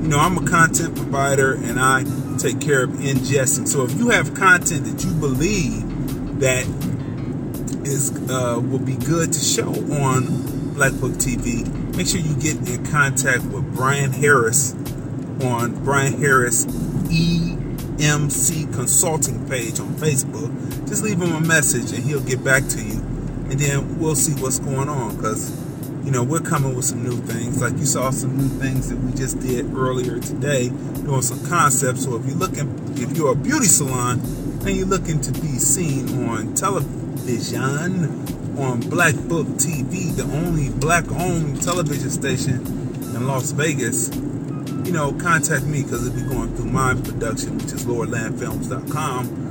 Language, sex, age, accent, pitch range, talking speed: English, male, 30-49, American, 130-145 Hz, 165 wpm